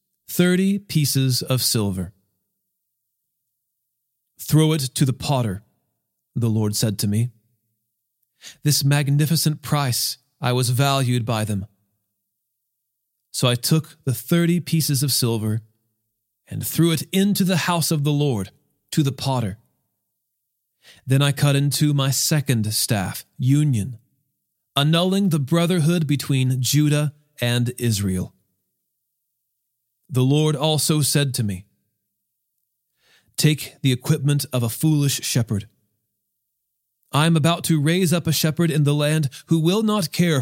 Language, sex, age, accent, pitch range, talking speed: English, male, 40-59, American, 120-160 Hz, 125 wpm